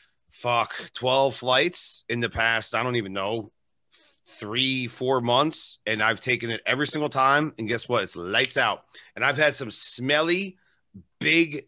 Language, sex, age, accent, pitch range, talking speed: English, male, 40-59, American, 115-165 Hz, 165 wpm